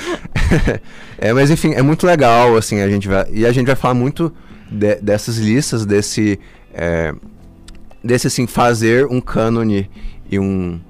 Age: 20-39